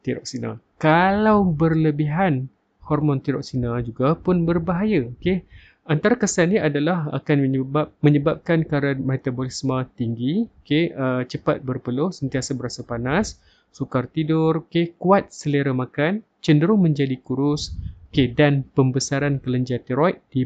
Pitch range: 125-155 Hz